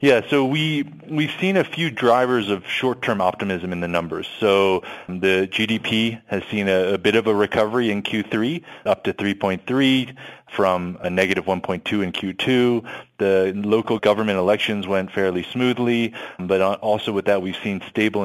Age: 30-49